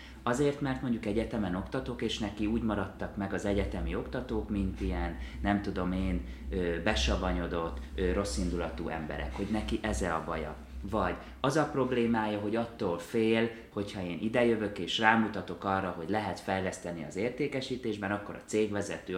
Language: Hungarian